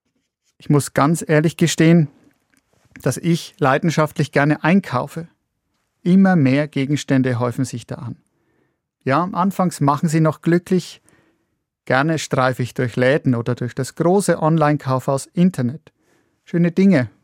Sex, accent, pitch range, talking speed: male, German, 135-165 Hz, 130 wpm